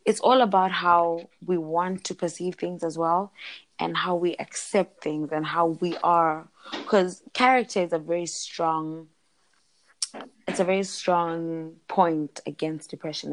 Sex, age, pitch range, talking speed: female, 20-39, 155-180 Hz, 150 wpm